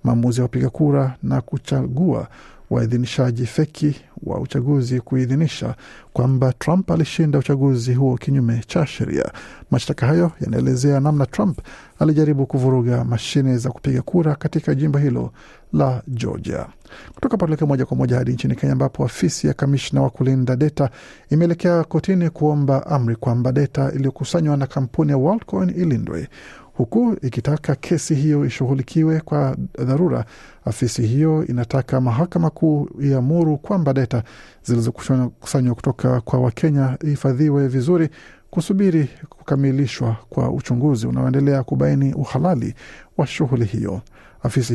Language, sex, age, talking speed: Swahili, male, 50-69, 125 wpm